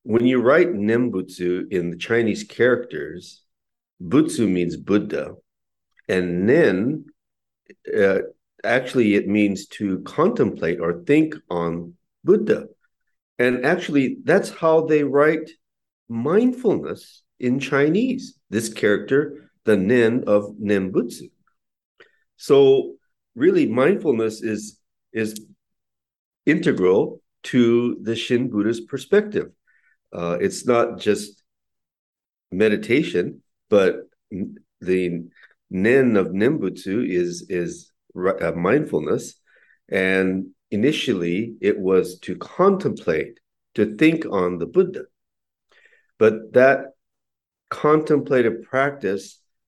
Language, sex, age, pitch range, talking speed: English, male, 50-69, 90-145 Hz, 95 wpm